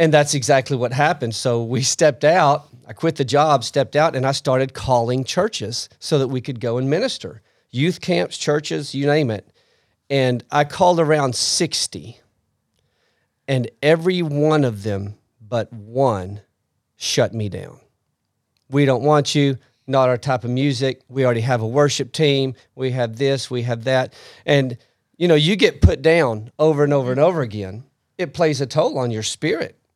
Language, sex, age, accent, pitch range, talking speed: English, male, 40-59, American, 115-150 Hz, 180 wpm